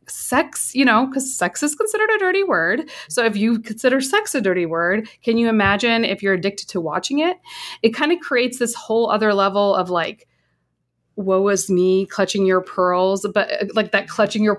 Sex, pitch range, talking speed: female, 180-225 Hz, 195 wpm